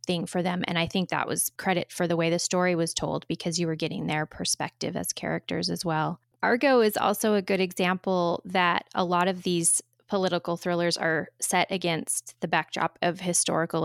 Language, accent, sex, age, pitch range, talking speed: English, American, female, 20-39, 160-185 Hz, 200 wpm